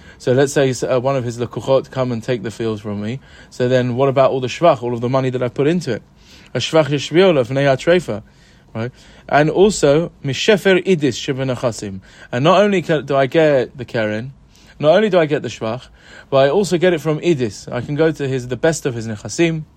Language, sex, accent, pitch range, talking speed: English, male, British, 120-155 Hz, 220 wpm